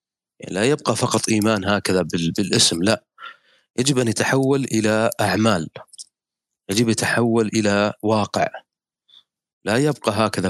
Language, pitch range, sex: Arabic, 100-125 Hz, male